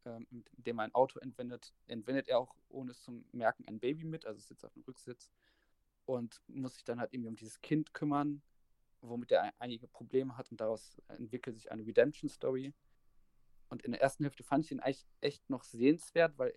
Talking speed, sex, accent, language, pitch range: 200 wpm, male, German, German, 110-135 Hz